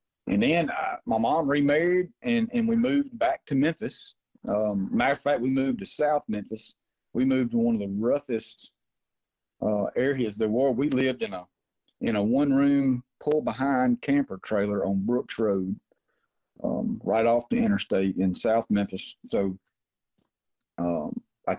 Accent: American